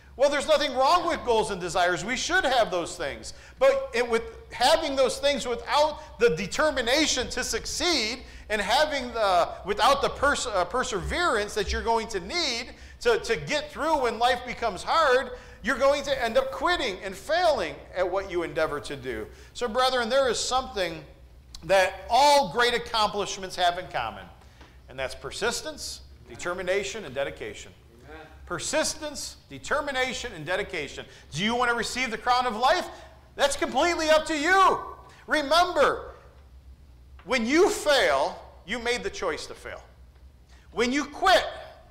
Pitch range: 205-295 Hz